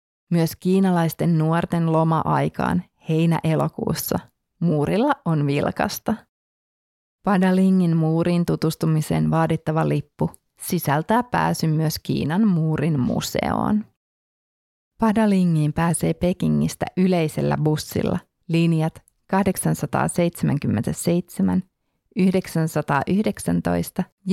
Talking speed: 65 wpm